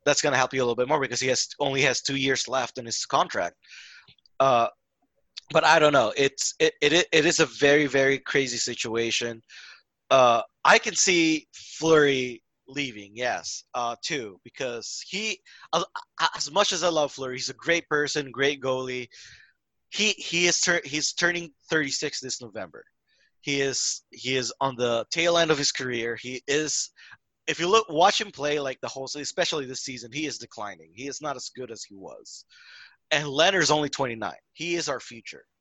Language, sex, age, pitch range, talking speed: English, male, 20-39, 125-165 Hz, 185 wpm